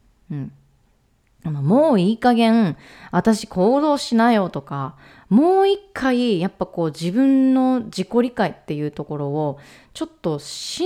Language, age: Japanese, 30-49